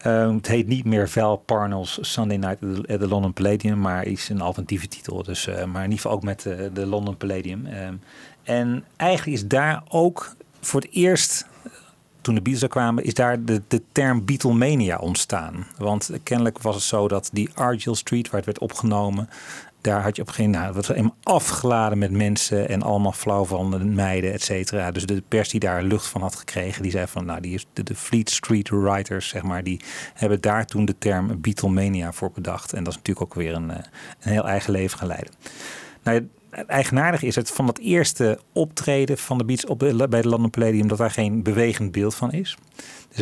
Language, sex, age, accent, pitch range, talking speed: Dutch, male, 40-59, Dutch, 100-120 Hz, 215 wpm